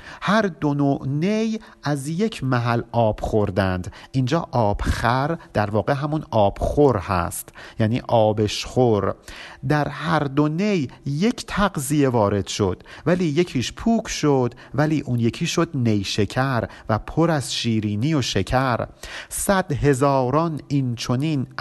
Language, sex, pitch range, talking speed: Persian, male, 115-155 Hz, 120 wpm